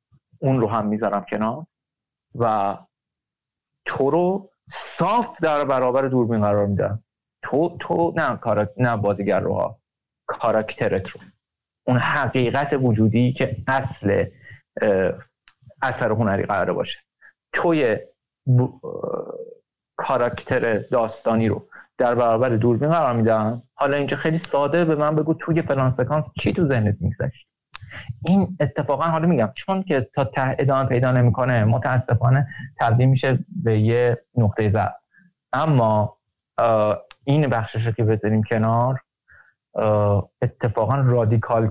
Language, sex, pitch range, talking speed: Persian, male, 110-150 Hz, 120 wpm